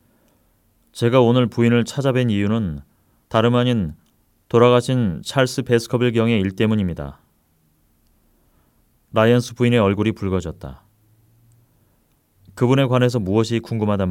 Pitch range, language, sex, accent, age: 95-125 Hz, Korean, male, native, 30-49